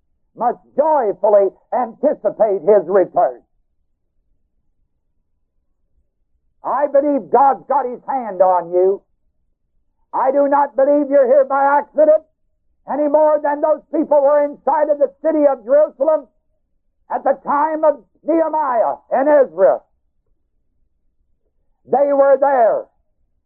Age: 60-79